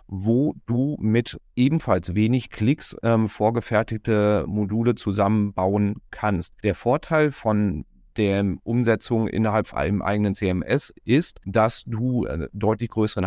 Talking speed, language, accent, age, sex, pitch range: 120 wpm, German, German, 40-59, male, 100-115 Hz